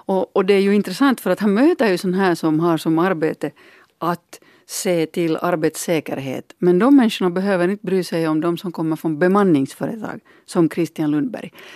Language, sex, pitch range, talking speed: Finnish, female, 160-210 Hz, 190 wpm